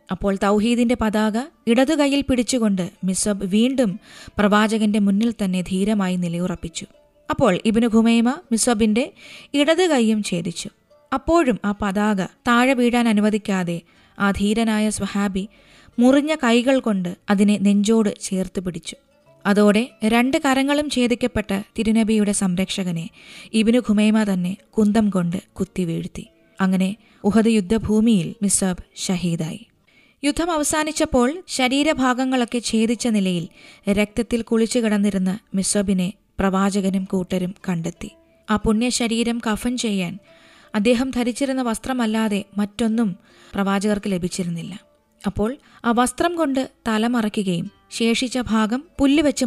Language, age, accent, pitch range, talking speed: Malayalam, 20-39, native, 195-240 Hz, 95 wpm